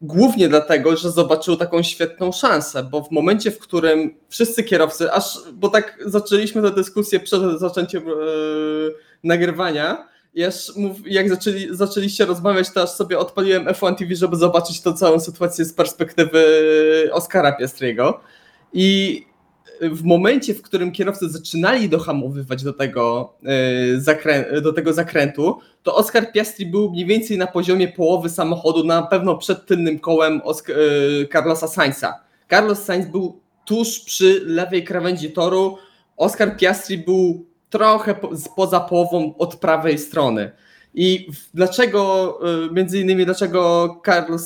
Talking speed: 130 wpm